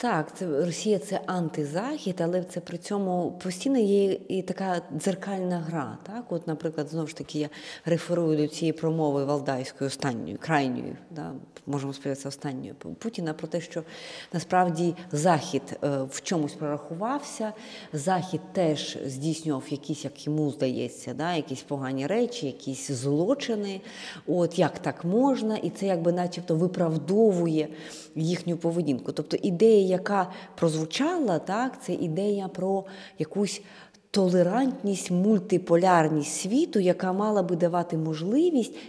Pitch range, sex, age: 150-195 Hz, female, 30-49